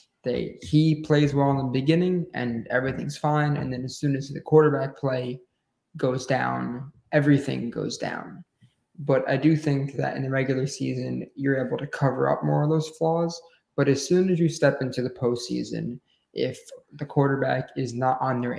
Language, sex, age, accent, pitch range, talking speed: English, male, 20-39, American, 130-150 Hz, 185 wpm